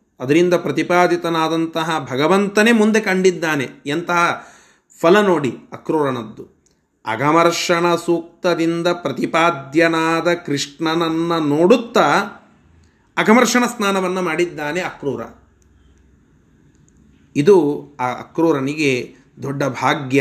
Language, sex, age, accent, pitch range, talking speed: Kannada, male, 30-49, native, 125-170 Hz, 70 wpm